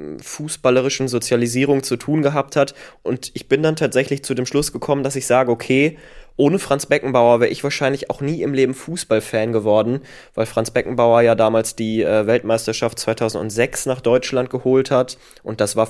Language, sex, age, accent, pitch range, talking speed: German, male, 20-39, German, 105-125 Hz, 175 wpm